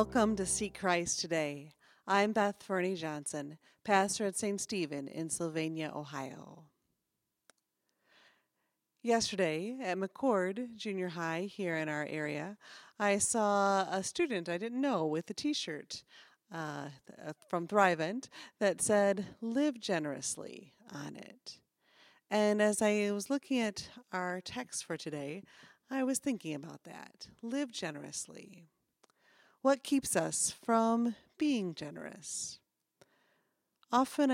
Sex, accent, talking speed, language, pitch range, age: female, American, 120 wpm, English, 170-245 Hz, 30-49